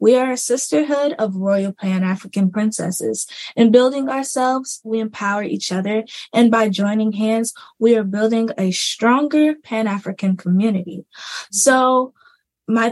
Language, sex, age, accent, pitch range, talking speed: English, female, 10-29, American, 210-245 Hz, 130 wpm